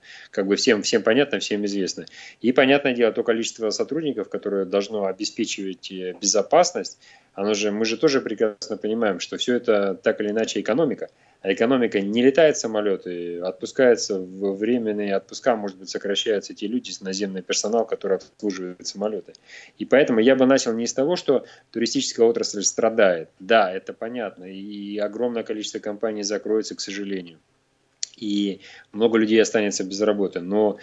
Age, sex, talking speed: 30-49, male, 155 wpm